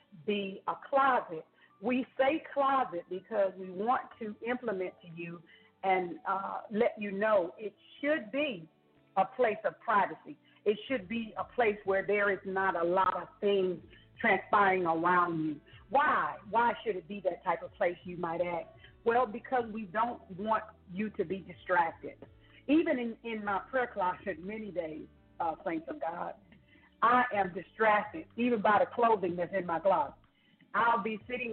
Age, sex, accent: 50-69, female, American